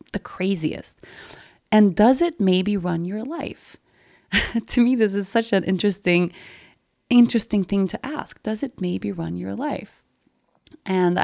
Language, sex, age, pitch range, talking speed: English, female, 30-49, 165-200 Hz, 145 wpm